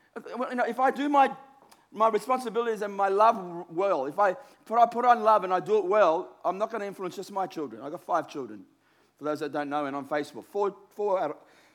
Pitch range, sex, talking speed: 150-245 Hz, male, 225 wpm